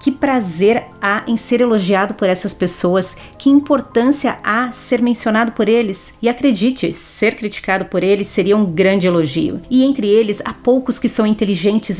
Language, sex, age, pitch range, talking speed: Portuguese, female, 40-59, 190-240 Hz, 170 wpm